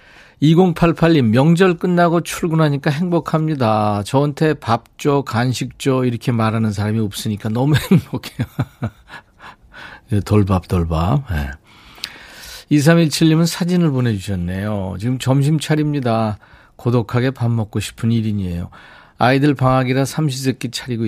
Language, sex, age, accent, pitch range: Korean, male, 40-59, native, 105-155 Hz